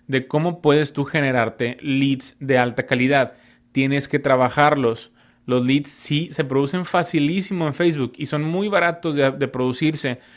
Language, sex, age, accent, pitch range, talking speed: Spanish, male, 20-39, Mexican, 120-140 Hz, 155 wpm